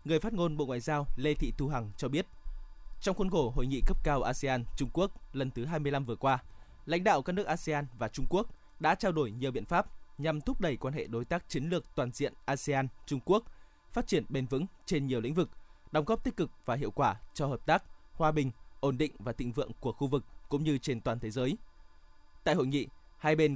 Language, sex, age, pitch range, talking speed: Vietnamese, male, 20-39, 125-155 Hz, 240 wpm